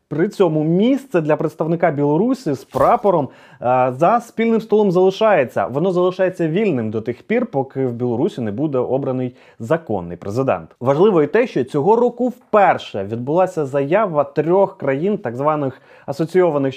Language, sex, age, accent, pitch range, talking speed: Ukrainian, male, 30-49, native, 145-205 Hz, 145 wpm